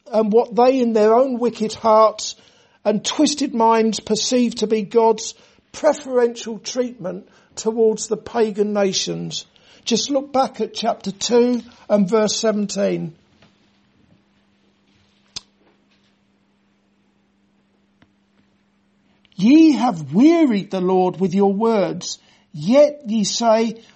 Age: 60-79